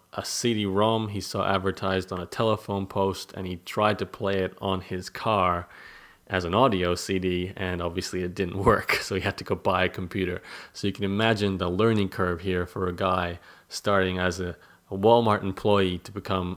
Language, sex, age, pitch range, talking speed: English, male, 30-49, 90-105 Hz, 195 wpm